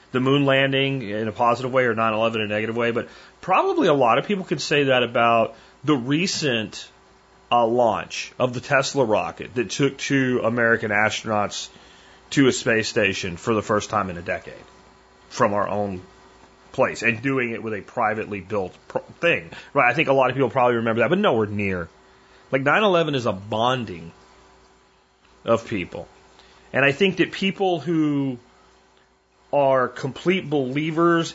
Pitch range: 110-140 Hz